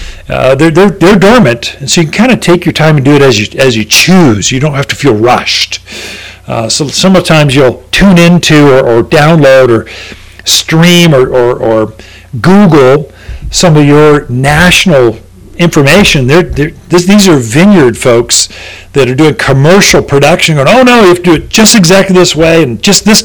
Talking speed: 195 wpm